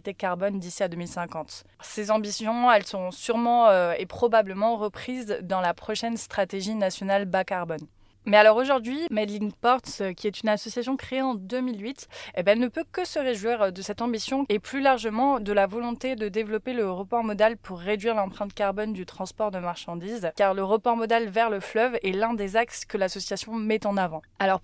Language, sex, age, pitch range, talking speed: French, female, 20-39, 200-245 Hz, 190 wpm